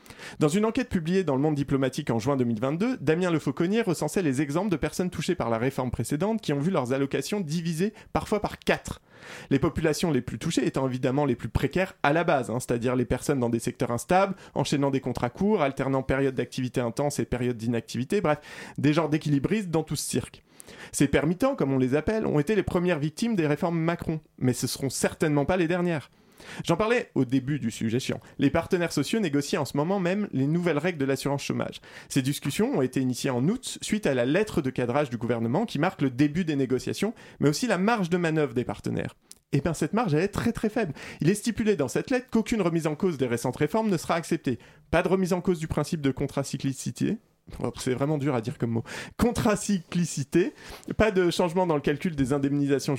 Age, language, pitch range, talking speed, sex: 30-49, French, 135-185 Hz, 220 wpm, male